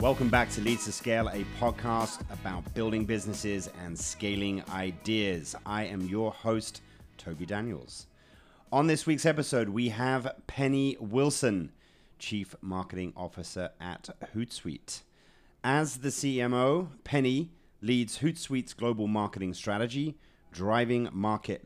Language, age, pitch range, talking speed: English, 30-49, 90-120 Hz, 120 wpm